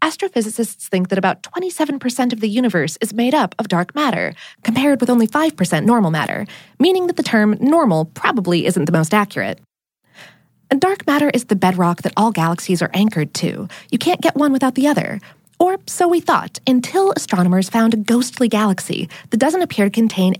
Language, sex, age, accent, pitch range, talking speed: English, female, 20-39, American, 185-290 Hz, 185 wpm